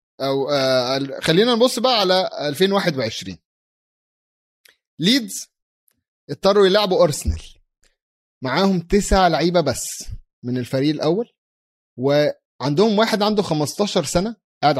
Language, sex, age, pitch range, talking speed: Arabic, male, 30-49, 130-195 Hz, 95 wpm